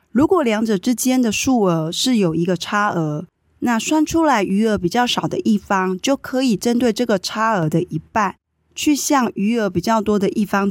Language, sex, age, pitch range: Chinese, female, 20-39, 180-235 Hz